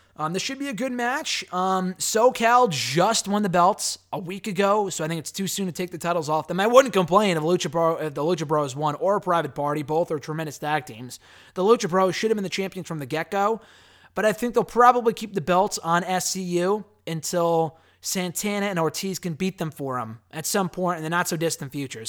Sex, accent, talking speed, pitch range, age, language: male, American, 225 wpm, 155-200 Hz, 20-39, English